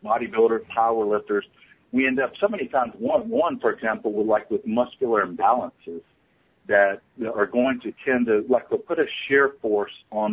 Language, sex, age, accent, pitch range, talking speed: English, male, 50-69, American, 100-130 Hz, 175 wpm